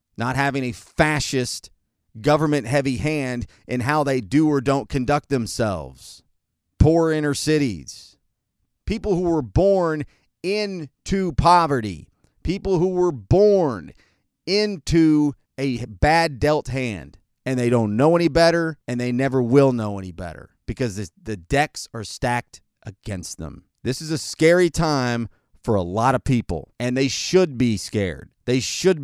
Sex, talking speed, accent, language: male, 145 wpm, American, English